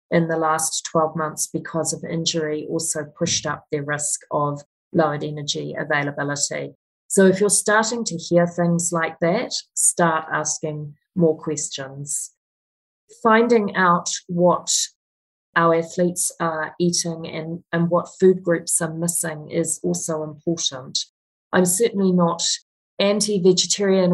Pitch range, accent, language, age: 155-180 Hz, Australian, English, 30-49